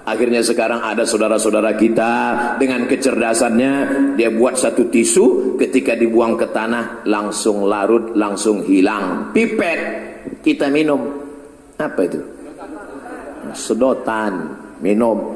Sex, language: male, Indonesian